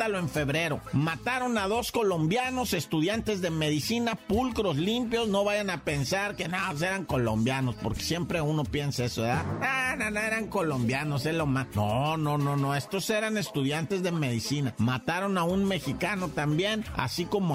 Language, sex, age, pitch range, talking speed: Spanish, male, 50-69, 145-210 Hz, 165 wpm